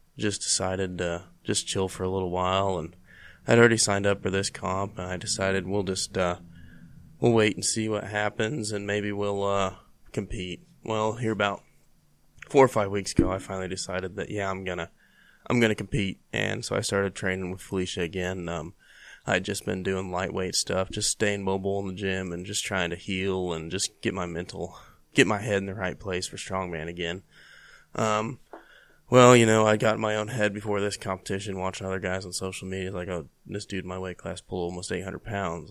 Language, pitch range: English, 90-105 Hz